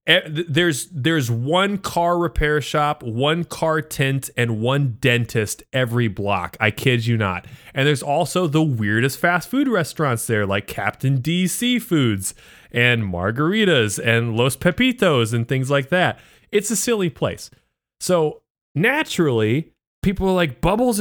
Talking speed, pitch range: 145 wpm, 125-185 Hz